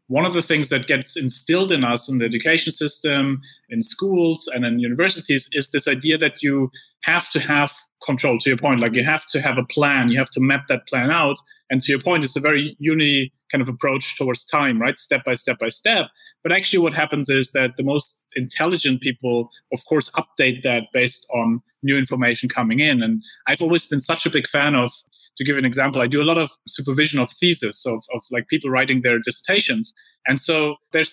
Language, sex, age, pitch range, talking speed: English, male, 30-49, 130-160 Hz, 220 wpm